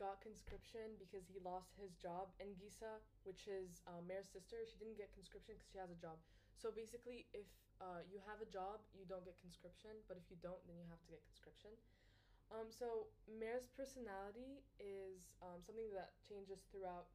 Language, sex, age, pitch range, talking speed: English, female, 20-39, 180-215 Hz, 195 wpm